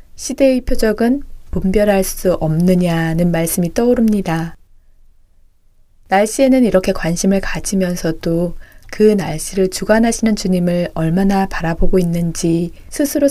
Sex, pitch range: female, 175-225 Hz